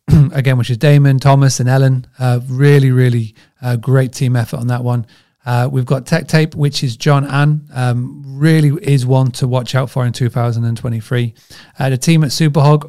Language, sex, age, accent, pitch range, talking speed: English, male, 30-49, British, 120-145 Hz, 190 wpm